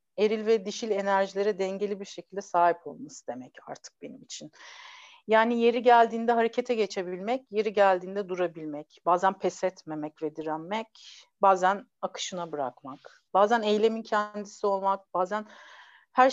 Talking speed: 130 wpm